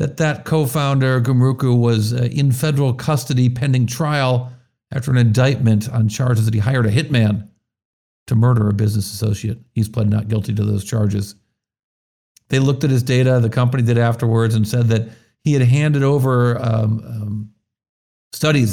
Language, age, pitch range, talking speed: English, 50-69, 110-130 Hz, 165 wpm